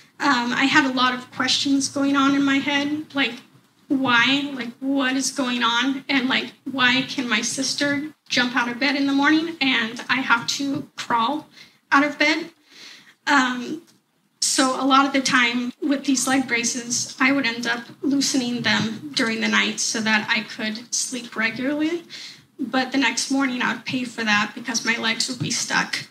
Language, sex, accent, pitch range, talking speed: English, female, American, 235-275 Hz, 185 wpm